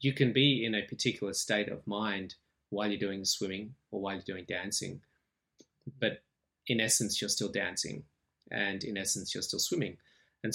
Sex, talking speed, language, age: male, 175 wpm, English, 20-39